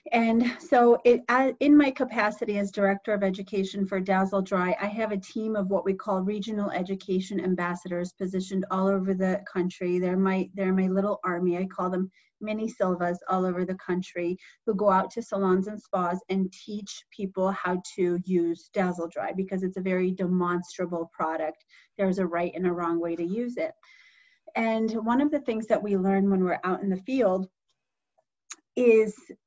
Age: 30-49